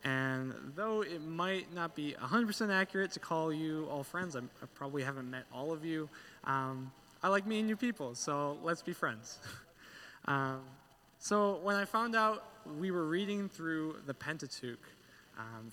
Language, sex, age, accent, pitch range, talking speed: English, male, 20-39, American, 125-170 Hz, 170 wpm